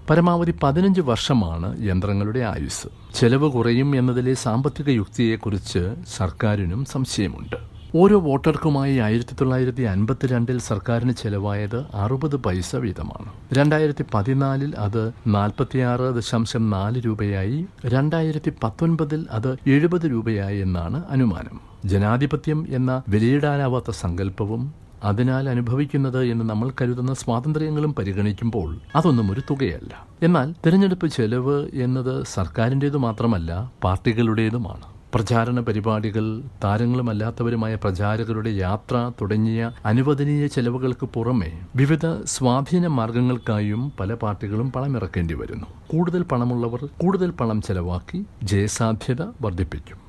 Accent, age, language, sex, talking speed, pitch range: native, 60-79, Malayalam, male, 85 wpm, 105-140 Hz